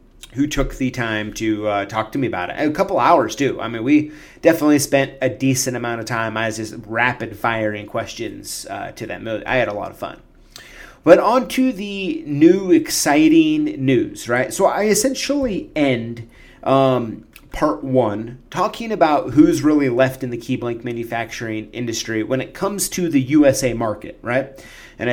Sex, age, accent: male, 30-49, American